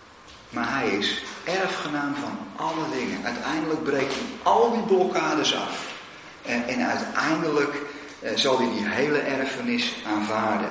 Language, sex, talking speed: Dutch, male, 135 wpm